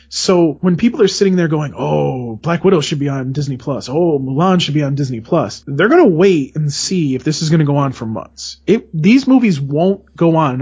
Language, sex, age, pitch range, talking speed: English, male, 30-49, 140-170 Hz, 250 wpm